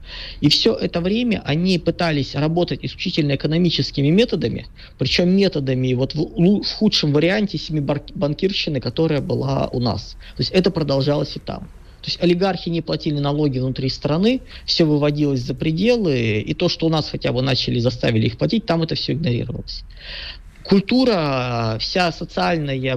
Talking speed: 150 wpm